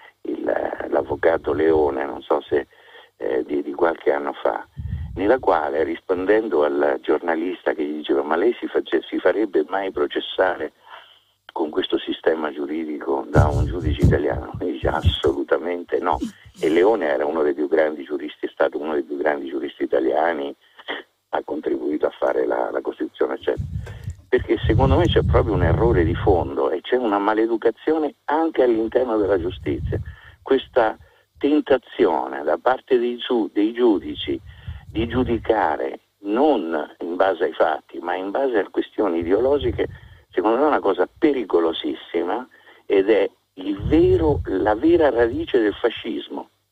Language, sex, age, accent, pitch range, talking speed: Italian, male, 50-69, native, 315-405 Hz, 145 wpm